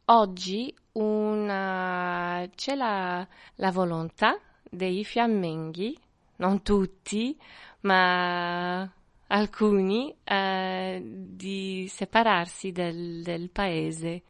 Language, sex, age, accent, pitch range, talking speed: Italian, female, 20-39, native, 180-210 Hz, 70 wpm